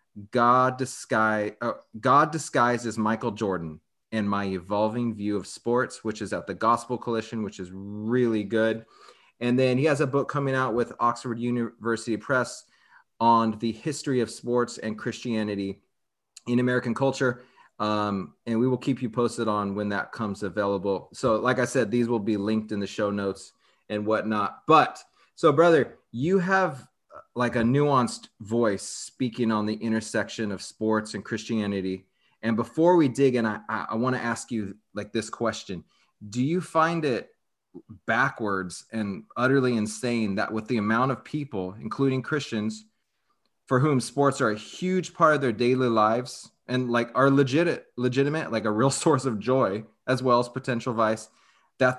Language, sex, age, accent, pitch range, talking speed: English, male, 30-49, American, 105-125 Hz, 170 wpm